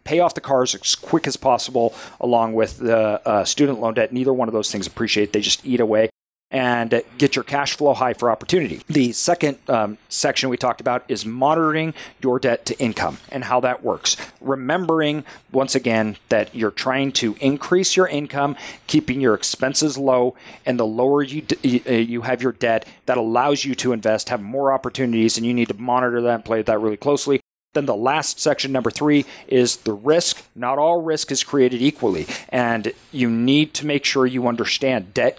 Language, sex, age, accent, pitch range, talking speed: English, male, 40-59, American, 120-145 Hz, 195 wpm